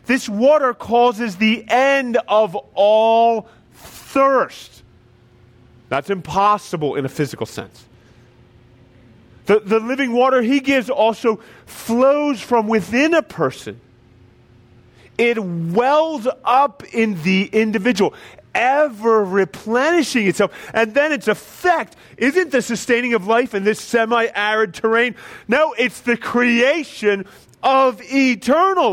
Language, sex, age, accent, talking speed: English, male, 30-49, American, 110 wpm